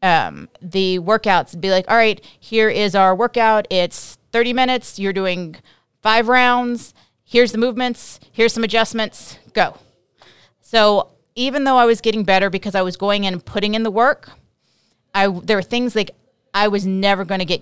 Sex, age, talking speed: female, 30-49, 185 wpm